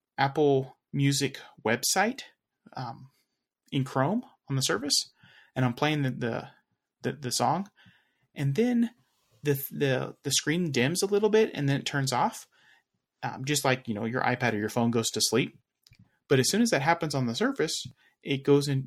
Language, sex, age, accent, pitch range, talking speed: English, male, 30-49, American, 120-145 Hz, 180 wpm